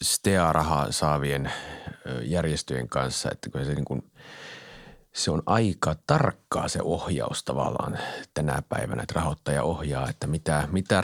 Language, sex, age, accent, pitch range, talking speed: Finnish, male, 30-49, native, 80-110 Hz, 125 wpm